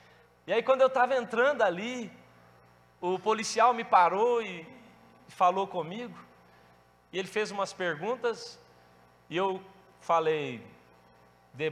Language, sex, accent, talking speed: Portuguese, male, Brazilian, 120 wpm